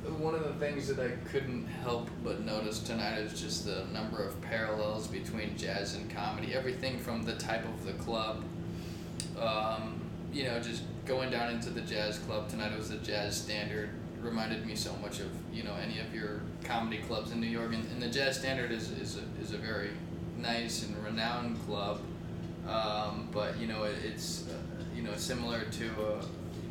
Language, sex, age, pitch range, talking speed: English, male, 20-39, 105-115 Hz, 200 wpm